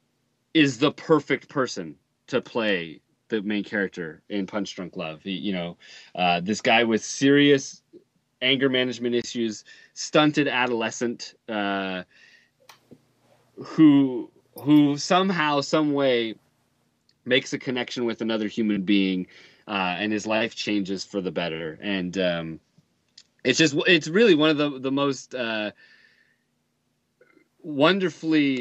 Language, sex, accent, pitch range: English, male, American, 100-145 Hz